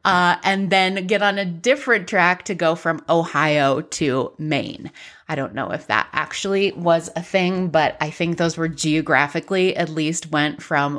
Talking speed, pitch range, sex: 180 wpm, 175-255 Hz, female